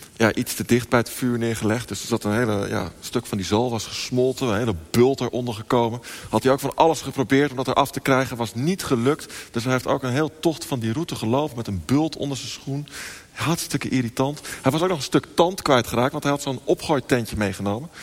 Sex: male